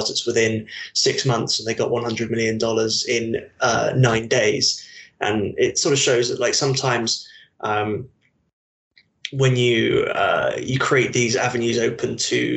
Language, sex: English, male